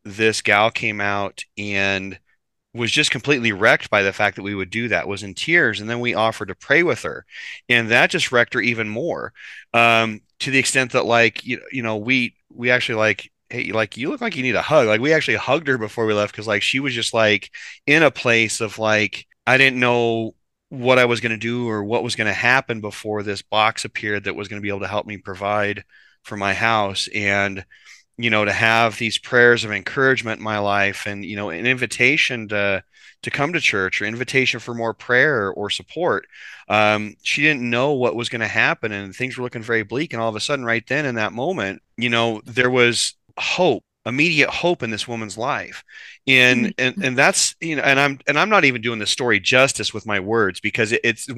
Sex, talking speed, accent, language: male, 225 wpm, American, English